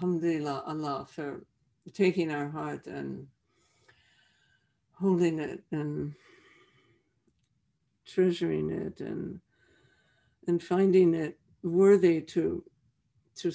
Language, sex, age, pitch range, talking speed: English, female, 60-79, 145-180 Hz, 85 wpm